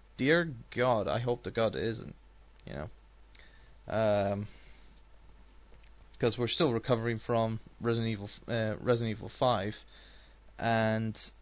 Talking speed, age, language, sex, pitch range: 115 wpm, 20-39, English, male, 110-130 Hz